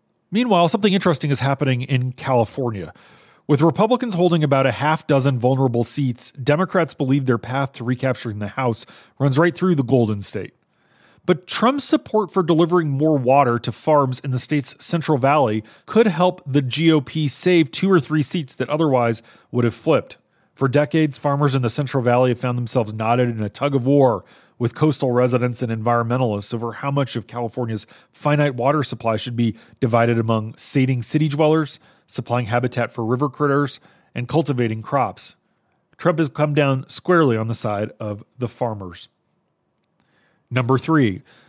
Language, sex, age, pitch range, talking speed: English, male, 30-49, 120-155 Hz, 165 wpm